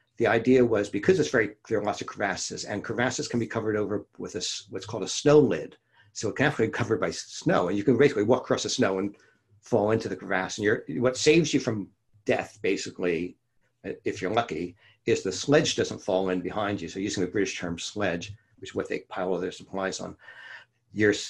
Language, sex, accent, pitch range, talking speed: English, male, American, 100-125 Hz, 225 wpm